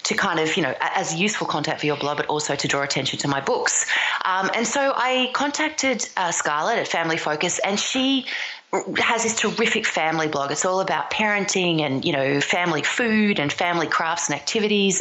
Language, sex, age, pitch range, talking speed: English, female, 30-49, 150-200 Hz, 200 wpm